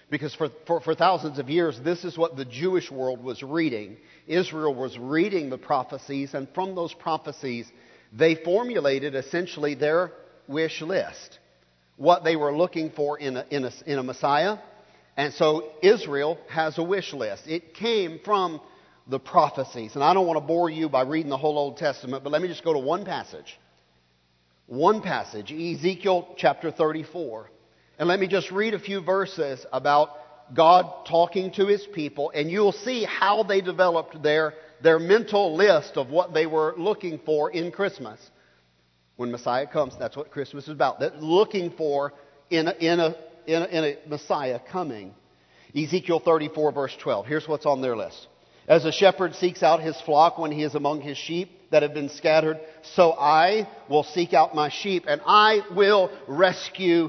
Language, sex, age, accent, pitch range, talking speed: English, male, 50-69, American, 145-175 Hz, 175 wpm